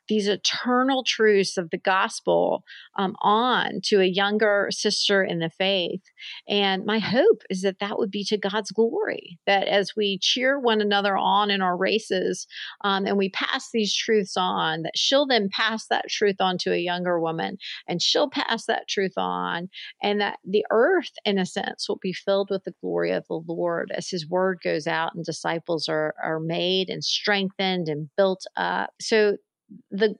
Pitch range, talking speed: 180-215 Hz, 185 wpm